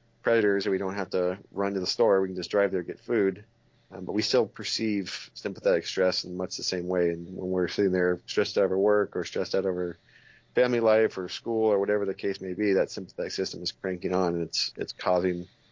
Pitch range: 90-100 Hz